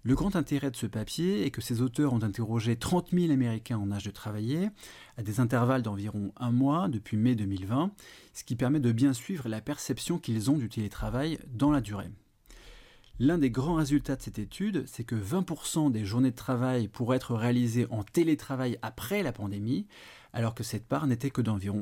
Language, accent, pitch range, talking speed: French, French, 115-140 Hz, 200 wpm